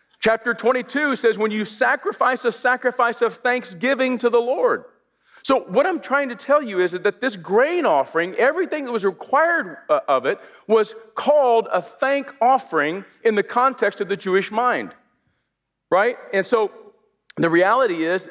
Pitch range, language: 185-265 Hz, English